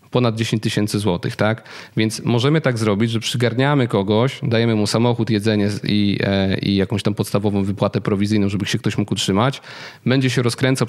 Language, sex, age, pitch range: Polish, male, 40-59, 105-125 Hz